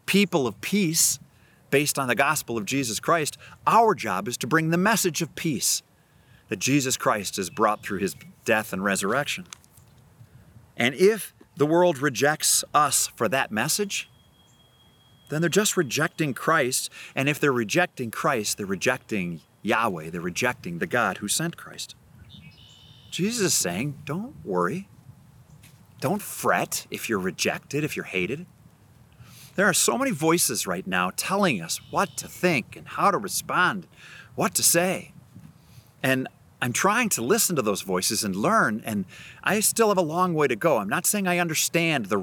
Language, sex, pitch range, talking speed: English, male, 125-180 Hz, 165 wpm